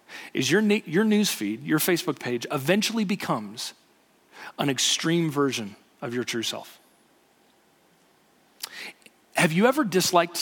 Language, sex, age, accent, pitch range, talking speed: English, male, 40-59, American, 135-185 Hz, 120 wpm